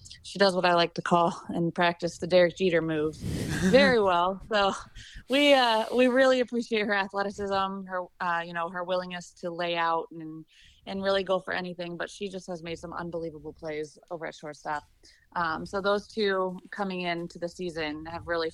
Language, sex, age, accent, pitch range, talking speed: English, female, 20-39, American, 160-190 Hz, 190 wpm